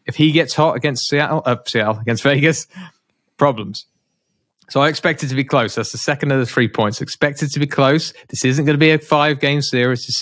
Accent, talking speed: British, 240 wpm